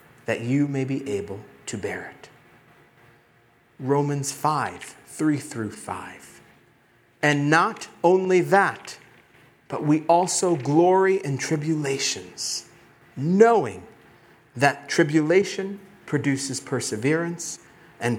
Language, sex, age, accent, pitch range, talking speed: English, male, 50-69, American, 125-170 Hz, 95 wpm